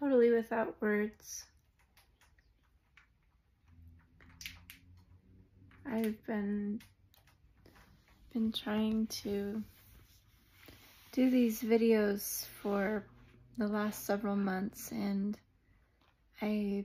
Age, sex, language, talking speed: 30-49, female, English, 60 wpm